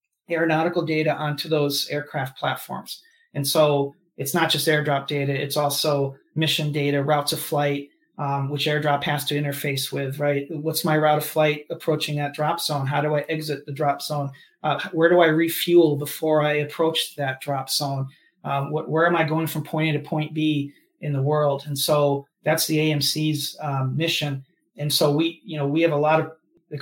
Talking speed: 190 wpm